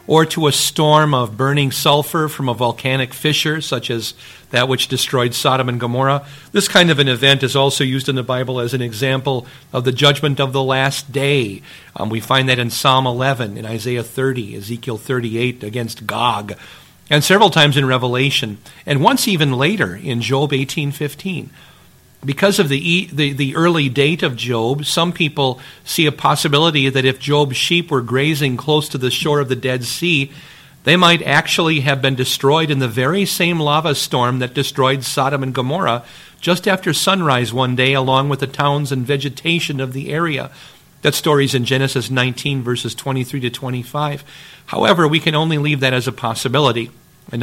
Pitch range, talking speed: 125-150 Hz, 185 wpm